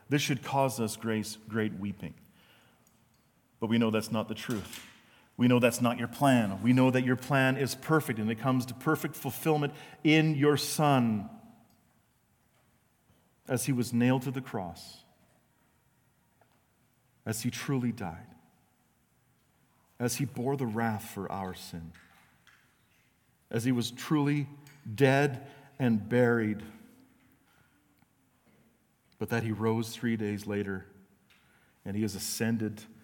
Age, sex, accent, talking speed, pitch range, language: 40-59, male, American, 135 wpm, 105-135 Hz, English